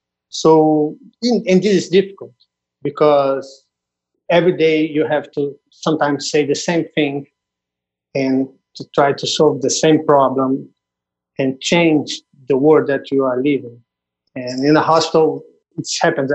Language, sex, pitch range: English, male, 130-155 Hz